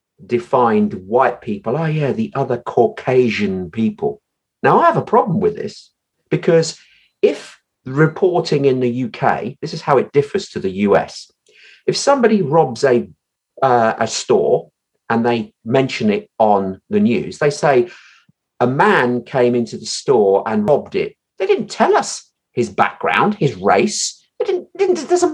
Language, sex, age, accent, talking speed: English, male, 40-59, British, 165 wpm